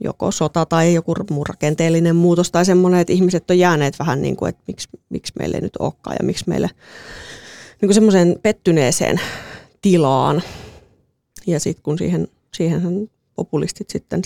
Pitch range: 160-185 Hz